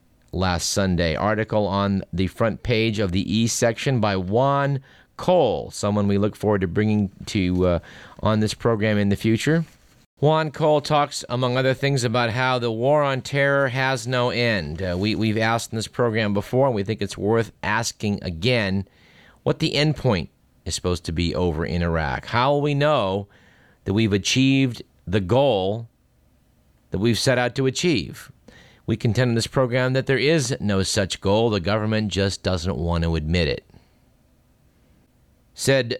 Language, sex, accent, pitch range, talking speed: English, male, American, 100-135 Hz, 175 wpm